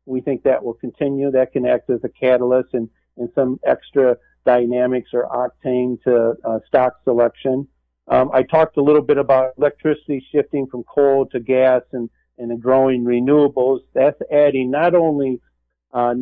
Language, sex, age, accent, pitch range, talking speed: English, male, 50-69, American, 120-140 Hz, 165 wpm